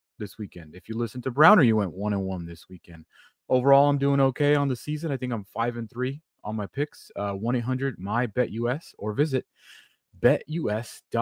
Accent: American